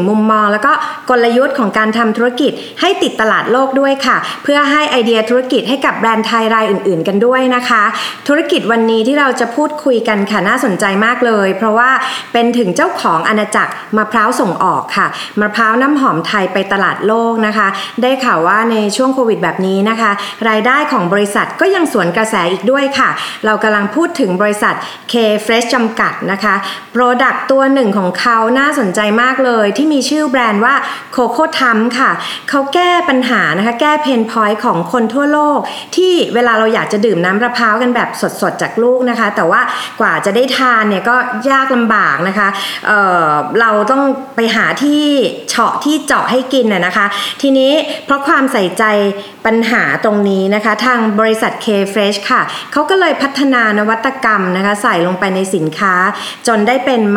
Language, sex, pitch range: Thai, female, 210-265 Hz